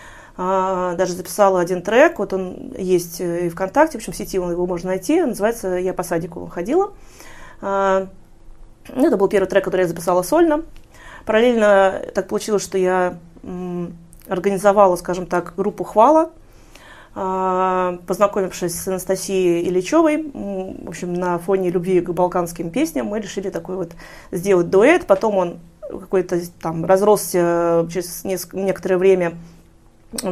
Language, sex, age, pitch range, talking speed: Russian, female, 20-39, 175-200 Hz, 135 wpm